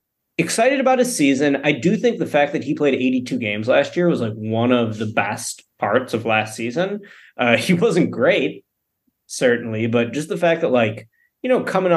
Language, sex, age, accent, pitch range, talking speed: English, male, 20-39, American, 120-155 Hz, 200 wpm